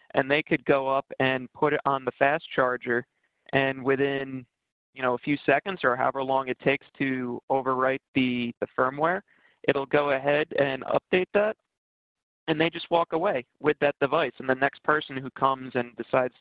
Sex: male